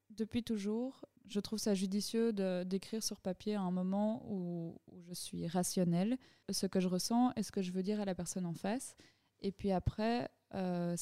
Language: French